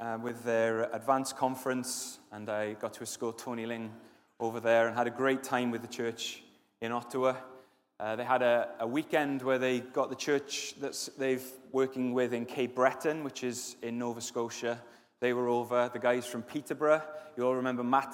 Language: English